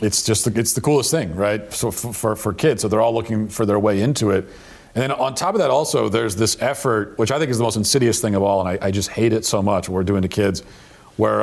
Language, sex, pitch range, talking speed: English, male, 100-120 Hz, 290 wpm